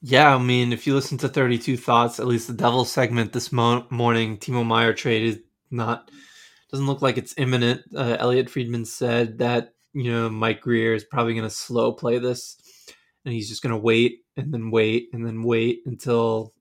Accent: American